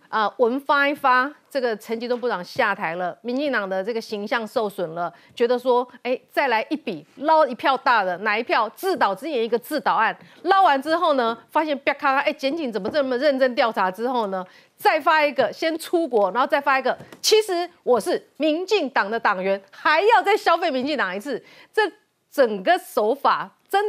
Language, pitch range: Chinese, 220-305 Hz